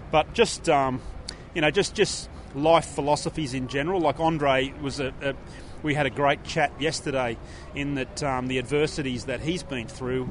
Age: 30-49